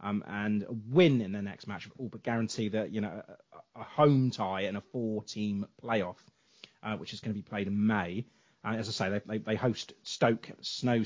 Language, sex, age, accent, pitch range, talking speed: English, male, 30-49, British, 105-125 Hz, 235 wpm